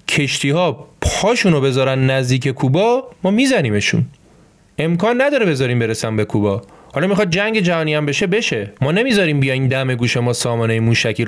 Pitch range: 115-170 Hz